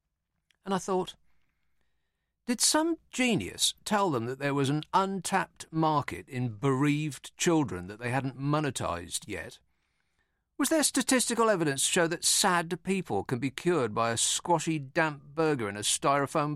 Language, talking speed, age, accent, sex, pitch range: English, 150 wpm, 50-69, British, male, 125-180 Hz